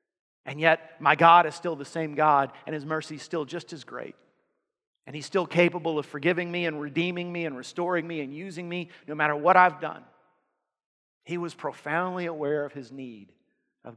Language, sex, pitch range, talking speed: English, male, 155-205 Hz, 200 wpm